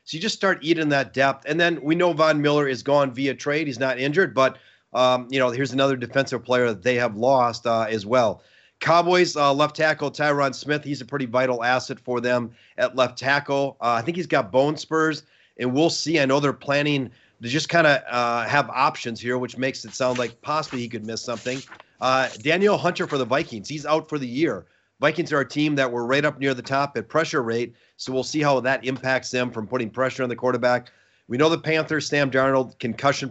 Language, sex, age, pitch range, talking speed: English, male, 30-49, 125-145 Hz, 230 wpm